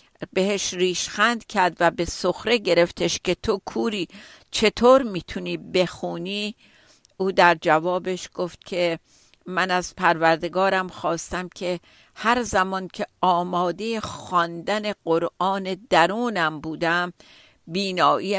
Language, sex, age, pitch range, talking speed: Persian, female, 50-69, 165-205 Hz, 105 wpm